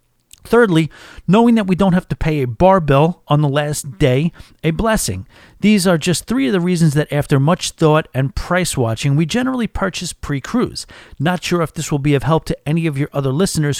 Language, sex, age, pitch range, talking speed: English, male, 40-59, 145-185 Hz, 220 wpm